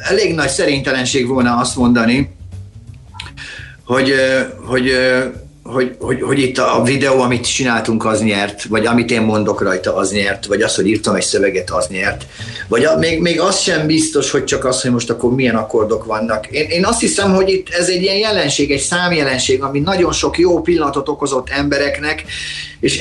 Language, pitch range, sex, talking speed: Hungarian, 125-160 Hz, male, 180 wpm